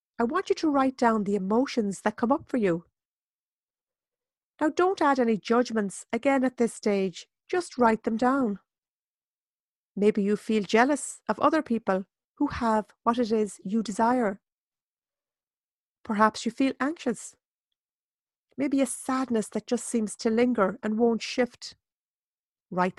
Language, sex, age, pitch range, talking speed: English, female, 40-59, 215-270 Hz, 145 wpm